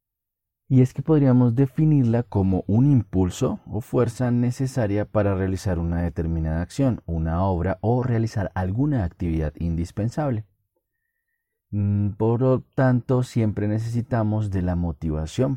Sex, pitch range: male, 85-115 Hz